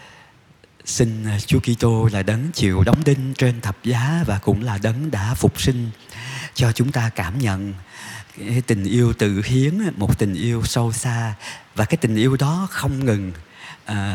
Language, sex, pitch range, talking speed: Vietnamese, male, 105-130 Hz, 180 wpm